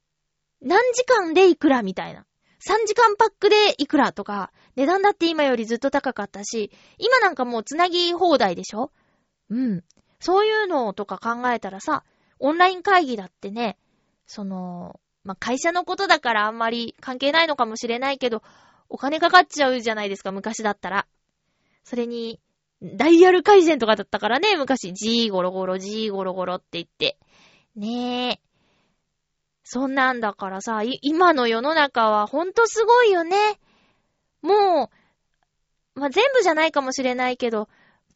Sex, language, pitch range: female, Japanese, 215-345 Hz